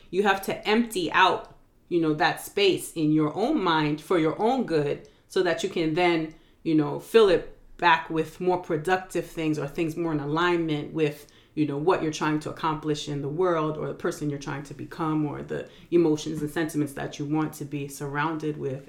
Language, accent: English, American